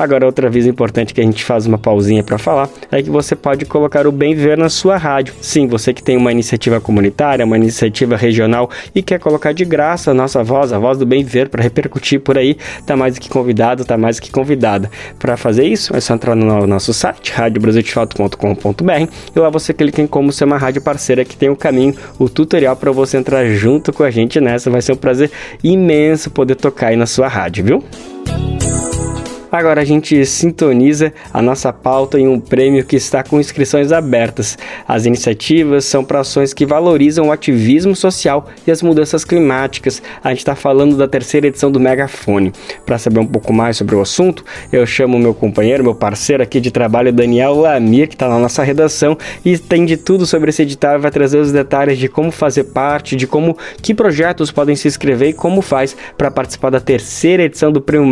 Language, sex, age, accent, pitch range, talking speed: Portuguese, male, 20-39, Brazilian, 120-150 Hz, 210 wpm